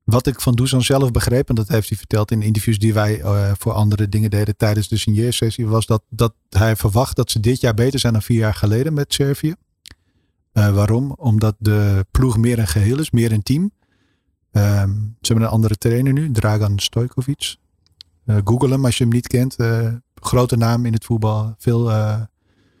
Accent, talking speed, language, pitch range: Dutch, 205 wpm, Dutch, 105-125 Hz